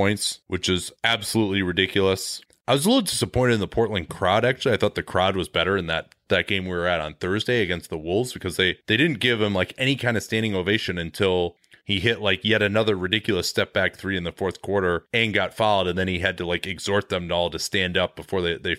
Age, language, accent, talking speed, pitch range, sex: 30-49, English, American, 250 wpm, 95-115 Hz, male